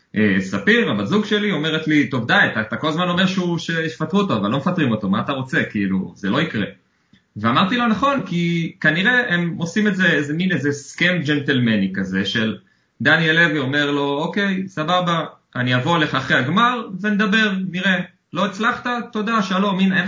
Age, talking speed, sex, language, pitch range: 30-49, 170 wpm, male, Hebrew, 115-185 Hz